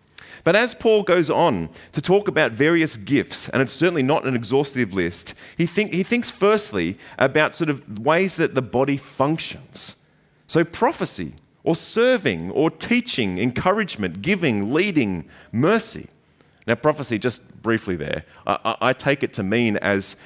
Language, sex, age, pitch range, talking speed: English, male, 30-49, 115-175 Hz, 150 wpm